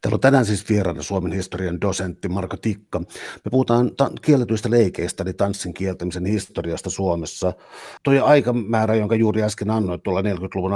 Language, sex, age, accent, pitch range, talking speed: Finnish, male, 60-79, native, 95-110 Hz, 160 wpm